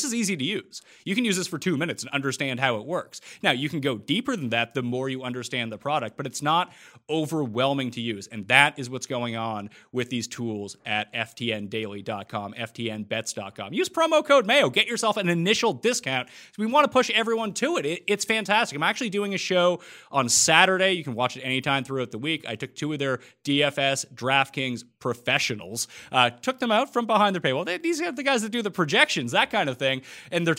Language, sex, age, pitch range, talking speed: English, male, 30-49, 120-165 Hz, 215 wpm